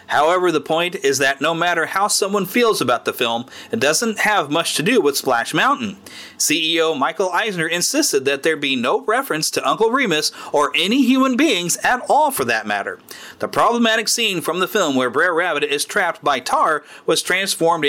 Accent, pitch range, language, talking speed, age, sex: American, 150-225 Hz, English, 195 wpm, 40-59, male